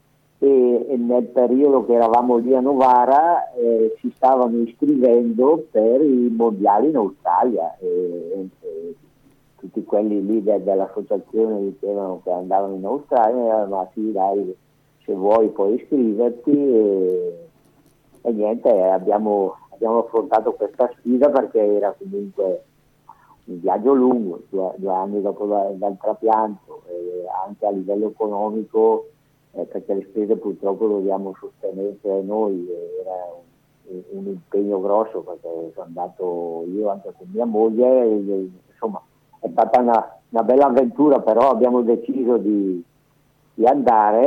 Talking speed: 125 wpm